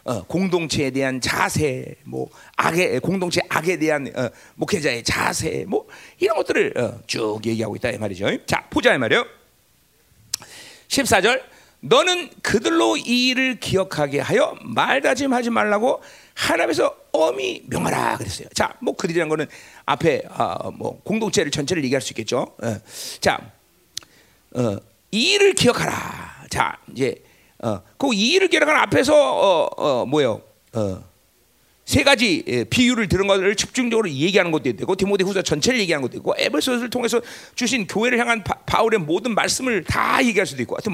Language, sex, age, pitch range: Korean, male, 40-59, 175-275 Hz